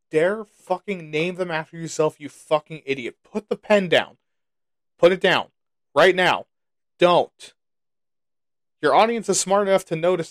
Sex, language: male, English